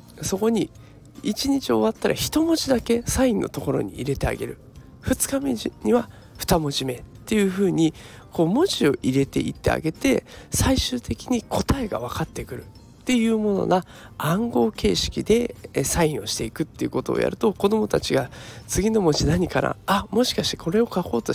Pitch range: 130-215 Hz